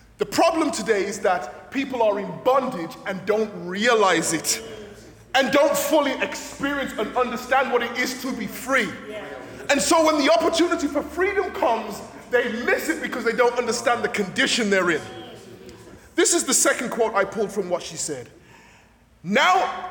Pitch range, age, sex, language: 235-340 Hz, 20-39, male, English